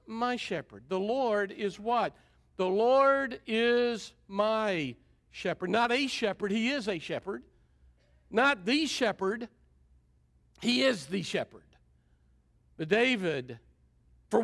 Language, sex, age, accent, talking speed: English, male, 50-69, American, 115 wpm